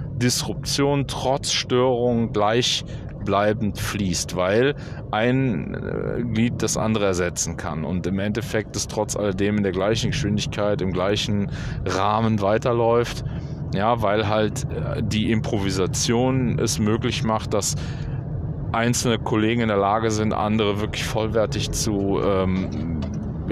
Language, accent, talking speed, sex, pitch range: German, German, 115 wpm, male, 100-125 Hz